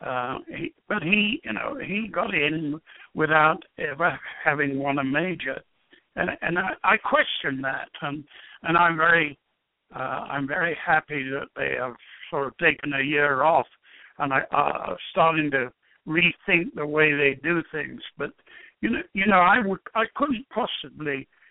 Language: English